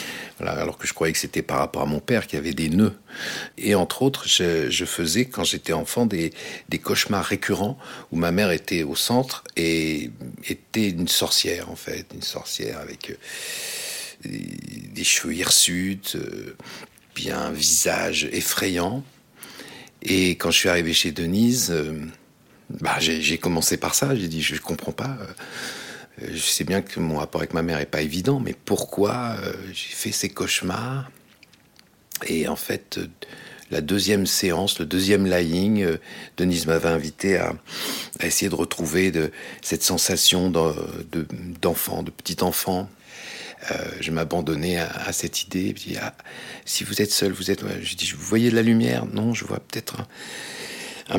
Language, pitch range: French, 80-115 Hz